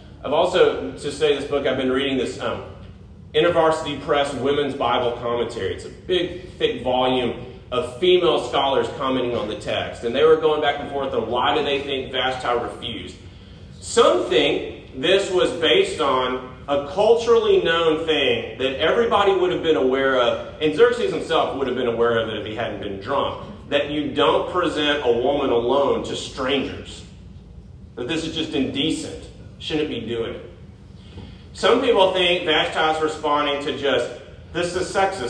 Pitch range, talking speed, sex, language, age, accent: 120-165 Hz, 175 wpm, male, English, 30-49, American